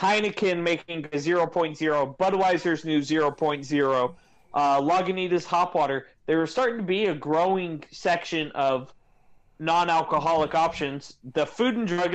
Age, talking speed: 30-49, 125 wpm